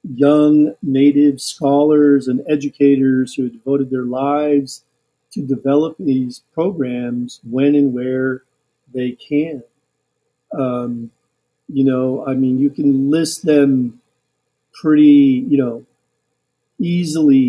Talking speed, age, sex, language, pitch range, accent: 105 wpm, 50-69, male, English, 130-150 Hz, American